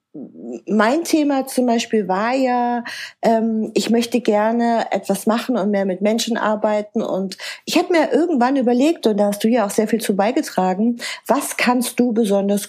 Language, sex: German, female